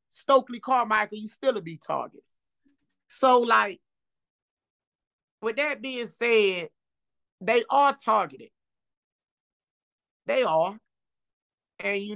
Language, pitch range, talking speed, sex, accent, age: English, 195-260 Hz, 95 wpm, male, American, 30-49